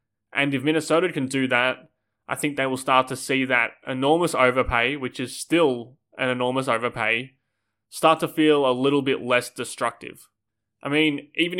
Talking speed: 170 wpm